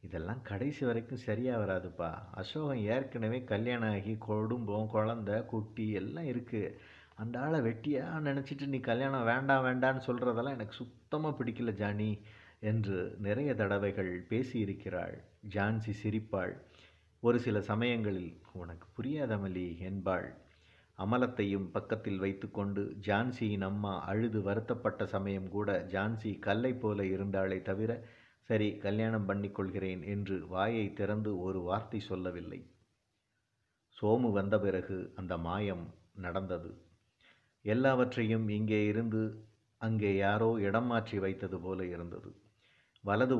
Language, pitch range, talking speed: Tamil, 95-115 Hz, 105 wpm